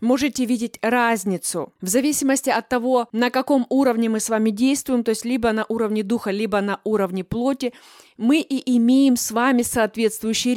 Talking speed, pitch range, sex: 170 wpm, 220-260 Hz, female